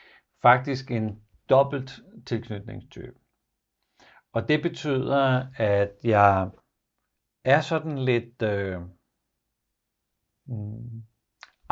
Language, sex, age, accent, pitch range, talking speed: Danish, male, 60-79, native, 110-135 Hz, 65 wpm